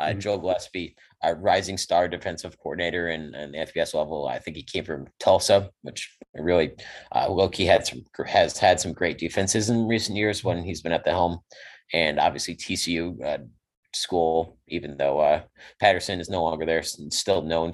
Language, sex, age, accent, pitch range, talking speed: English, male, 30-49, American, 80-100 Hz, 185 wpm